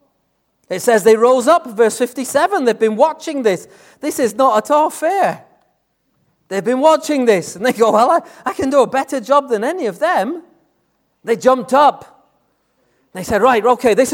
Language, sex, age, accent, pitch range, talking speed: English, male, 40-59, British, 170-260 Hz, 185 wpm